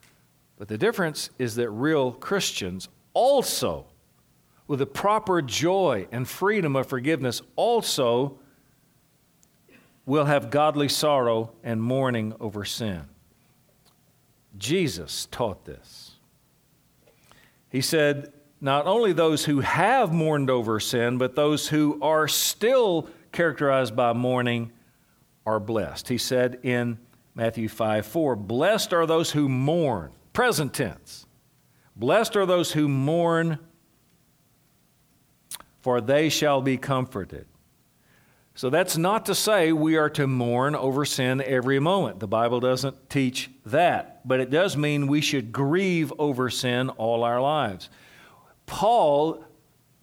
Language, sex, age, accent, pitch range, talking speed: English, male, 50-69, American, 120-155 Hz, 120 wpm